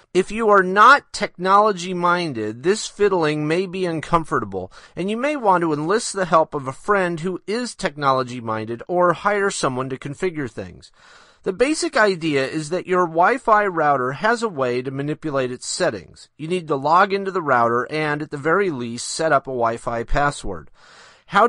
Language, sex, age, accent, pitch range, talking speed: English, male, 40-59, American, 130-190 Hz, 175 wpm